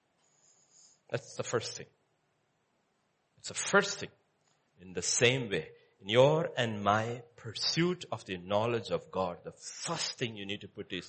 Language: English